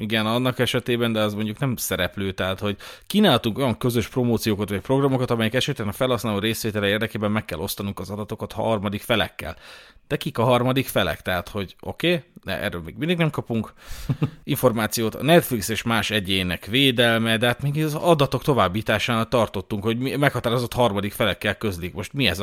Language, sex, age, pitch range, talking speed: Hungarian, male, 30-49, 105-130 Hz, 180 wpm